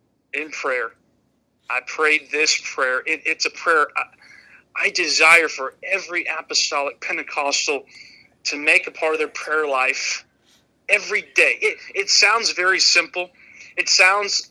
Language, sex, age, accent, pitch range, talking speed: English, male, 40-59, American, 155-230 Hz, 135 wpm